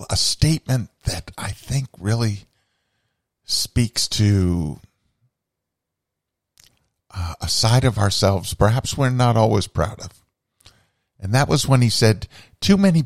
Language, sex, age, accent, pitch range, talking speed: English, male, 50-69, American, 90-115 Hz, 120 wpm